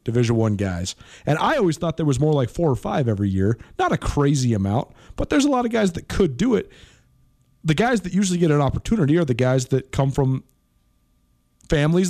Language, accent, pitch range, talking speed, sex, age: English, American, 120-160 Hz, 220 wpm, male, 30-49